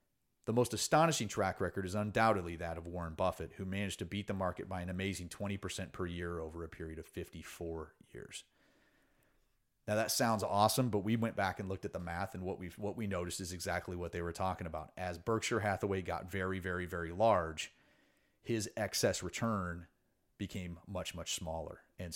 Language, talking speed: English, 195 wpm